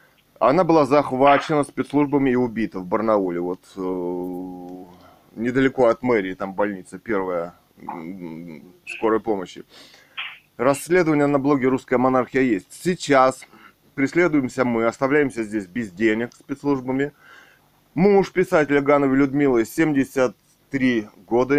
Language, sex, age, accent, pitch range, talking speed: Russian, male, 20-39, native, 115-145 Hz, 105 wpm